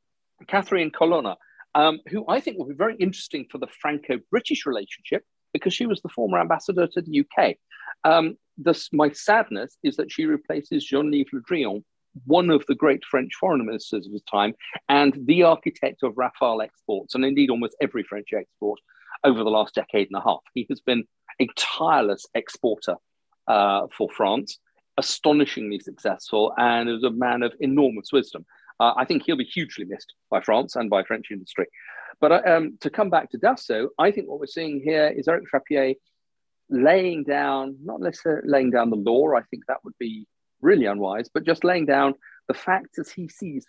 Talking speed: 185 wpm